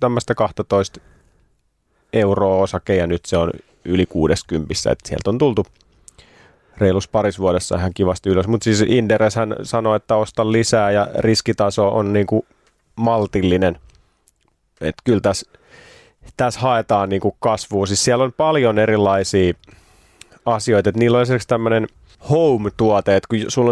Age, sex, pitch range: 30-49, male, 95-115 Hz